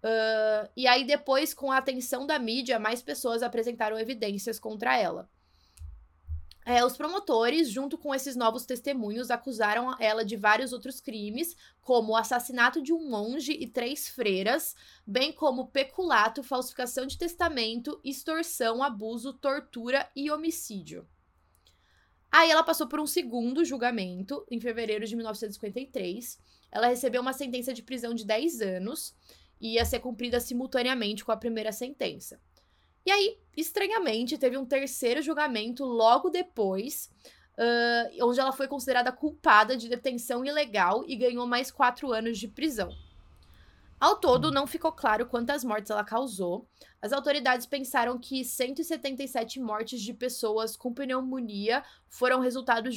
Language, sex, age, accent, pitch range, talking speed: Portuguese, female, 20-39, Brazilian, 225-275 Hz, 135 wpm